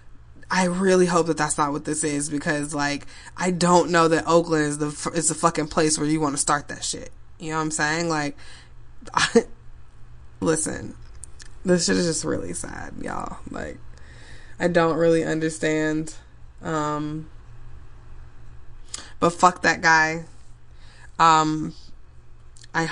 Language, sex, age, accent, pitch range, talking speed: English, female, 20-39, American, 155-195 Hz, 145 wpm